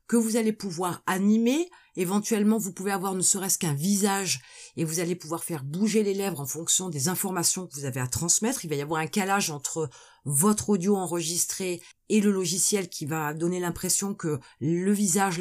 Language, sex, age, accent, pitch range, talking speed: French, female, 30-49, French, 170-230 Hz, 195 wpm